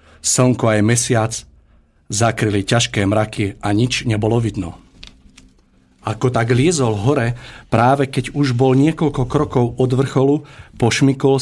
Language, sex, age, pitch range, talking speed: Slovak, male, 50-69, 105-130 Hz, 120 wpm